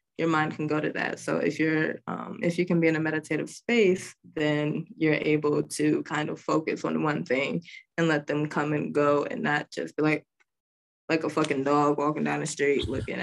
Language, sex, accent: English, female, American